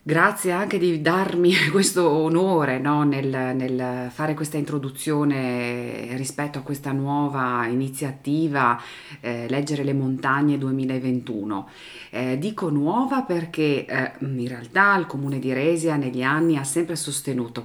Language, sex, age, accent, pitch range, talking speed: Italian, female, 40-59, native, 125-160 Hz, 125 wpm